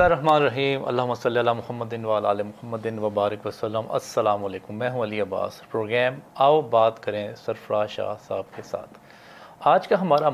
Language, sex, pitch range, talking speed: English, male, 110-130 Hz, 80 wpm